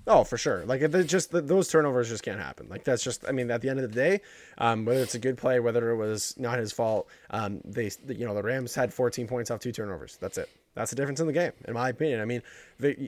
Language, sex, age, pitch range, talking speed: English, male, 20-39, 105-135 Hz, 275 wpm